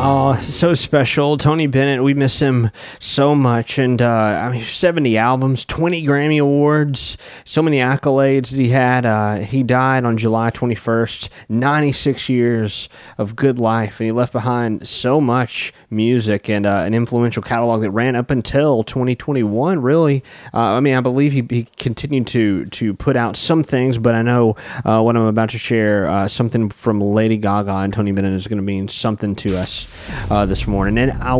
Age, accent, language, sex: 20-39, American, English, male